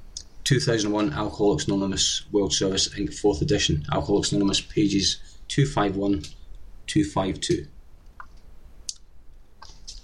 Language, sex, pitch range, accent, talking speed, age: English, male, 85-125 Hz, British, 70 wpm, 30-49